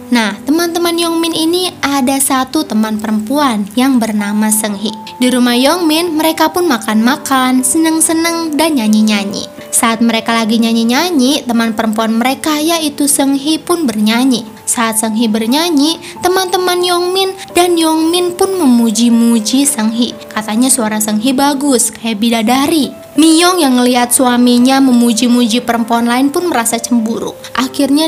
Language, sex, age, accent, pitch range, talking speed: Indonesian, female, 20-39, native, 235-310 Hz, 125 wpm